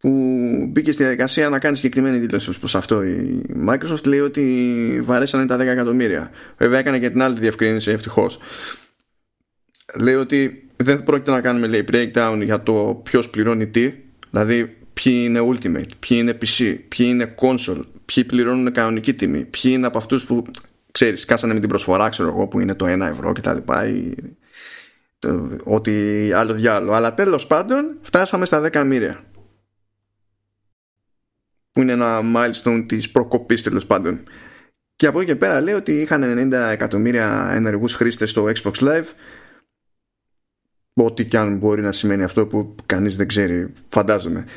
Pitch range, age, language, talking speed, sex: 110-130 Hz, 20-39, Greek, 160 wpm, male